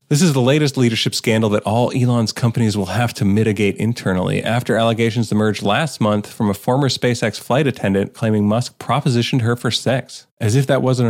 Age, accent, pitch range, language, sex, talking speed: 30-49, American, 110-135 Hz, English, male, 195 wpm